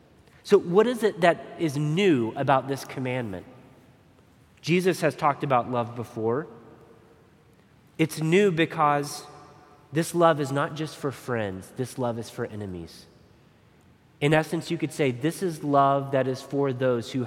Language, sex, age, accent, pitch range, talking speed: English, male, 30-49, American, 125-155 Hz, 155 wpm